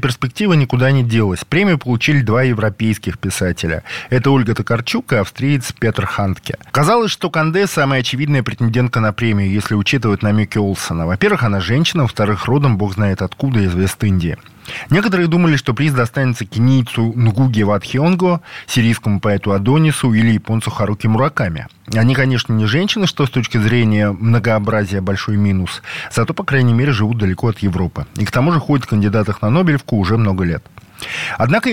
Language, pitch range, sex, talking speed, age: Russian, 105-140 Hz, male, 160 wpm, 20-39